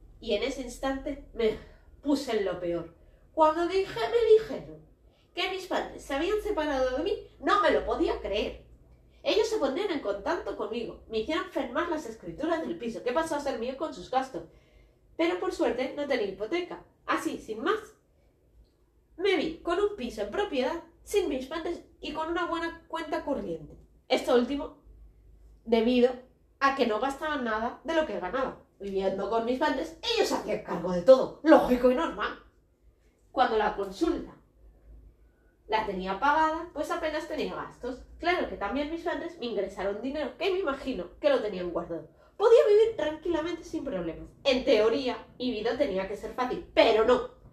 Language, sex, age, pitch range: Spanish, female, 20-39, 230-335 Hz